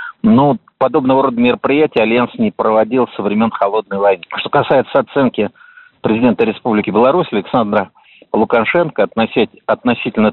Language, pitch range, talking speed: Russian, 105-130 Hz, 115 wpm